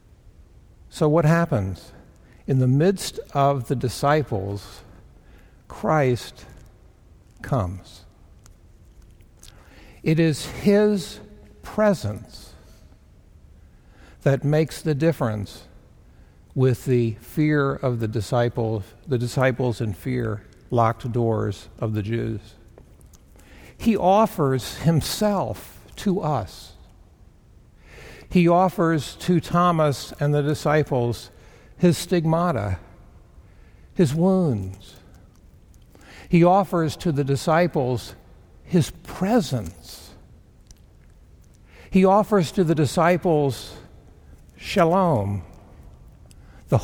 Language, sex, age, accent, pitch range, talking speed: German, male, 60-79, American, 100-155 Hz, 80 wpm